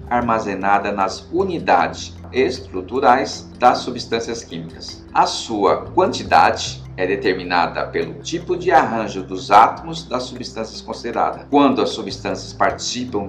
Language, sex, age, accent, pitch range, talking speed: Portuguese, male, 50-69, Brazilian, 95-140 Hz, 115 wpm